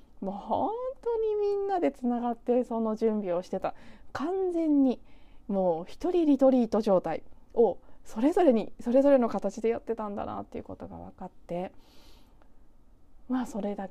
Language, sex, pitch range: Japanese, female, 180-230 Hz